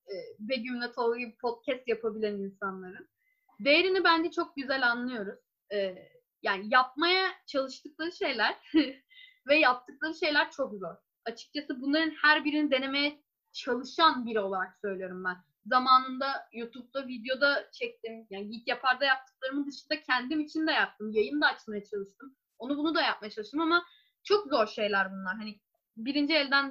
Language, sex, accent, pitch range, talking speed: Turkish, female, native, 230-325 Hz, 135 wpm